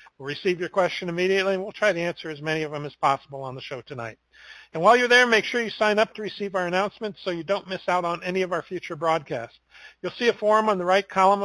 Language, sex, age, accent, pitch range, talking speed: English, male, 50-69, American, 160-200 Hz, 275 wpm